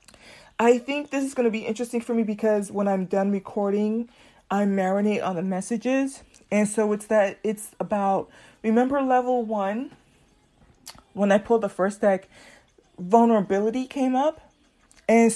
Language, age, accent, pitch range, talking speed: English, 20-39, American, 190-230 Hz, 150 wpm